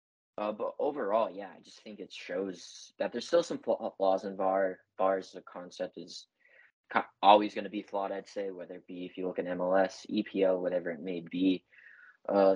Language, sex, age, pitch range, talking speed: English, male, 20-39, 90-105 Hz, 190 wpm